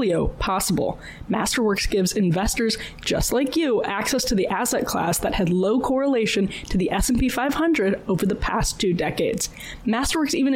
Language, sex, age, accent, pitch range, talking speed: English, female, 20-39, American, 200-275 Hz, 155 wpm